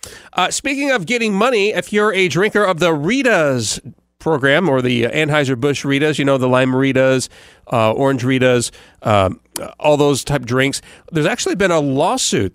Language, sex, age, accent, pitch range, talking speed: English, male, 40-59, American, 125-180 Hz, 165 wpm